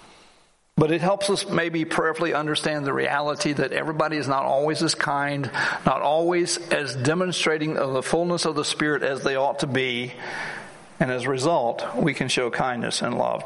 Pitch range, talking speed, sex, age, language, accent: 135-160 Hz, 180 wpm, male, 60-79, English, American